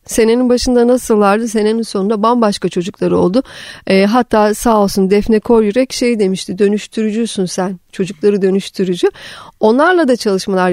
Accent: native